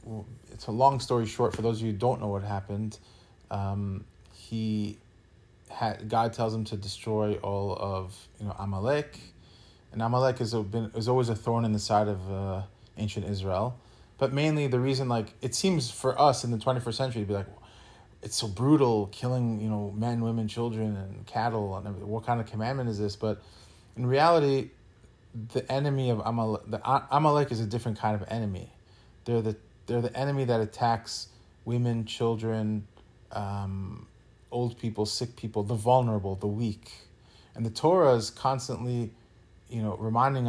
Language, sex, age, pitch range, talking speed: English, male, 20-39, 105-120 Hz, 175 wpm